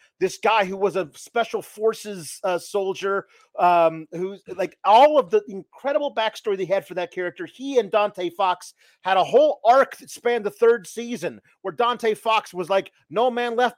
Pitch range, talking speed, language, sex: 185-250 Hz, 185 wpm, English, male